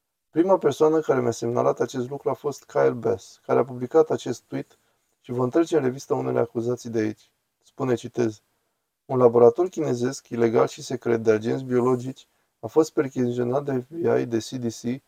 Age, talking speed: 20-39, 170 wpm